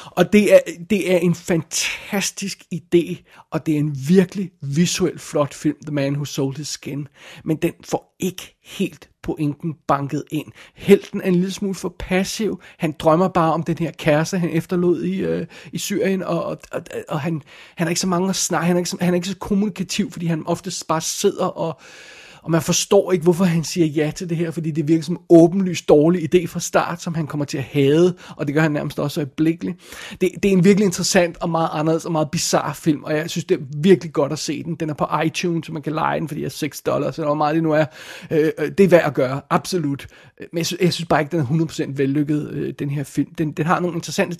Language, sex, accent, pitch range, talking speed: Danish, male, native, 155-180 Hz, 245 wpm